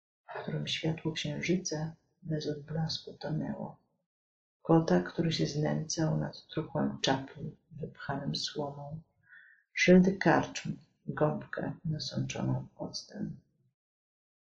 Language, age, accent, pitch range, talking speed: Polish, 40-59, native, 155-180 Hz, 85 wpm